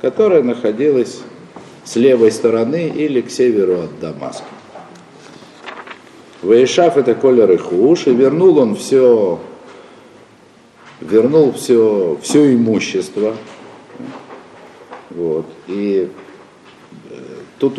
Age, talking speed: 50-69, 90 wpm